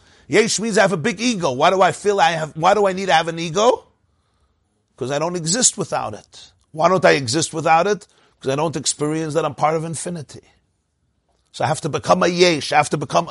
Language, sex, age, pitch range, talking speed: English, male, 50-69, 130-190 Hz, 240 wpm